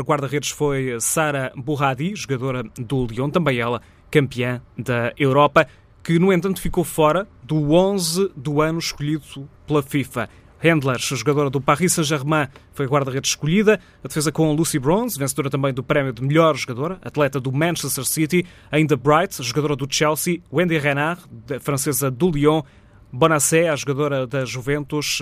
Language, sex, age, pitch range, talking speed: Portuguese, male, 20-39, 130-155 Hz, 155 wpm